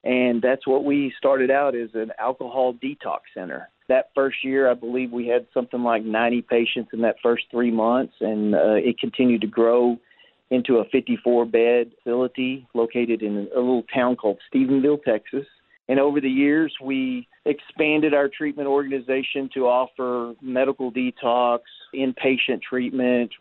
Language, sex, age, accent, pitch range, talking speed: English, male, 40-59, American, 120-135 Hz, 155 wpm